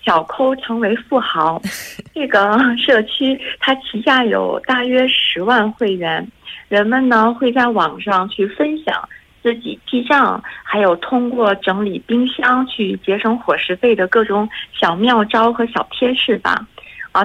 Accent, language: Chinese, Korean